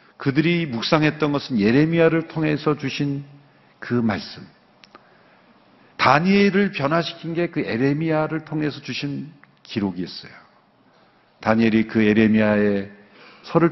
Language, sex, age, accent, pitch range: Korean, male, 50-69, native, 120-165 Hz